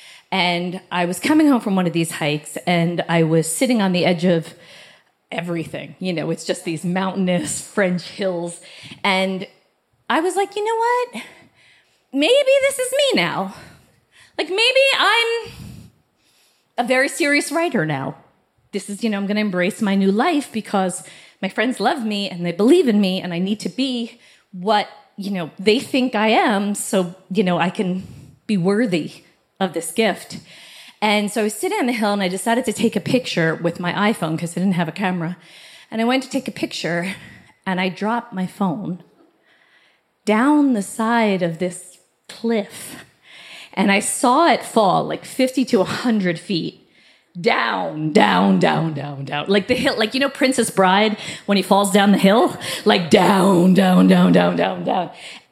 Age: 30-49